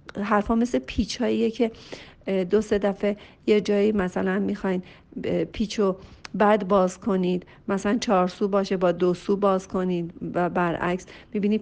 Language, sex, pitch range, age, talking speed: Persian, female, 190-285 Hz, 50-69, 140 wpm